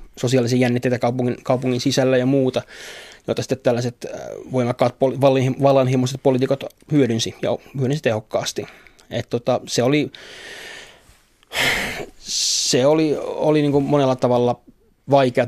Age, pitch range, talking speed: 20-39, 120-135 Hz, 115 wpm